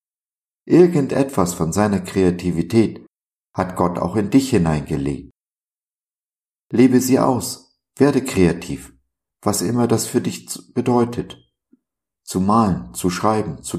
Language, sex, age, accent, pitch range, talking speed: German, male, 50-69, German, 80-105 Hz, 115 wpm